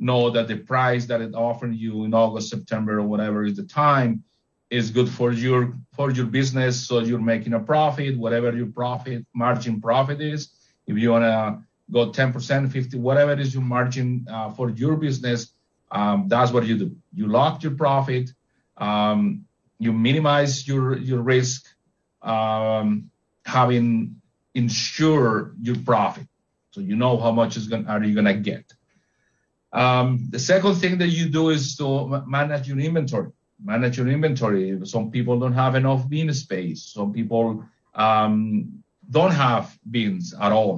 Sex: male